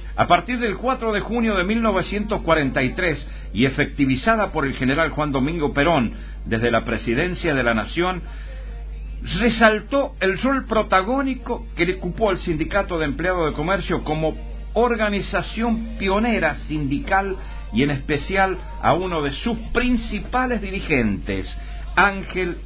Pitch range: 120-205 Hz